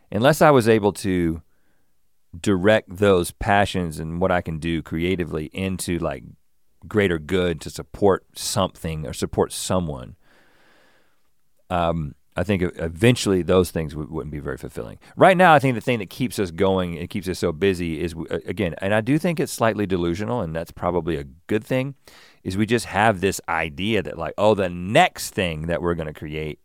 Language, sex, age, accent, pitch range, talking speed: English, male, 40-59, American, 80-105 Hz, 180 wpm